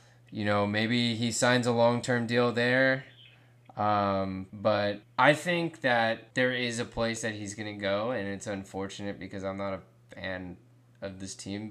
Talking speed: 175 wpm